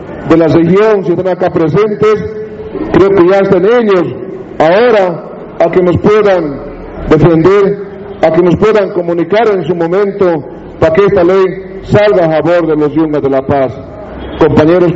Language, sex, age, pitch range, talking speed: Spanish, male, 50-69, 160-190 Hz, 160 wpm